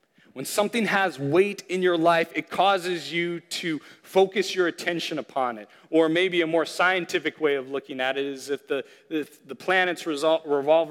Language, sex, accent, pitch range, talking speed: English, male, American, 140-175 Hz, 175 wpm